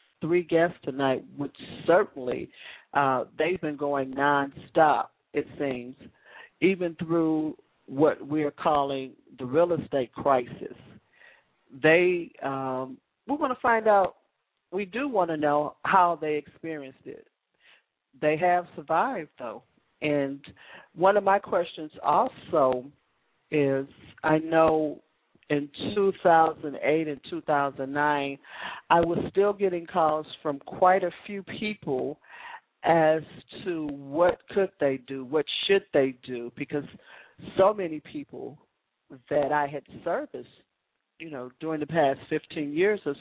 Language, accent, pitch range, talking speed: English, American, 140-175 Hz, 130 wpm